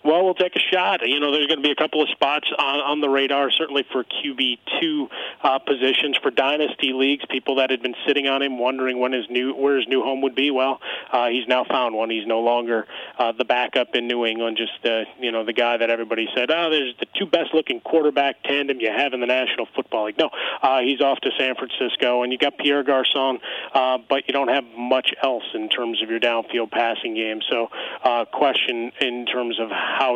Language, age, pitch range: English, 30-49, 115-130 Hz